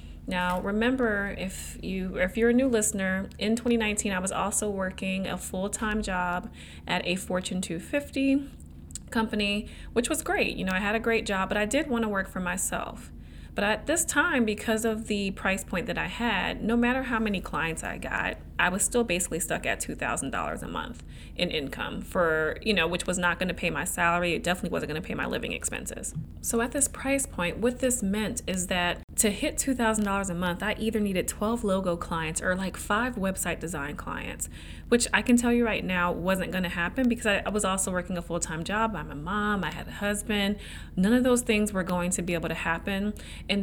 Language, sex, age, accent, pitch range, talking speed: English, female, 30-49, American, 180-230 Hz, 215 wpm